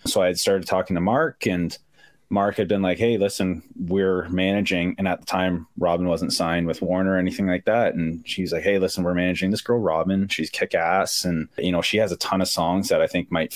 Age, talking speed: 20-39, 245 wpm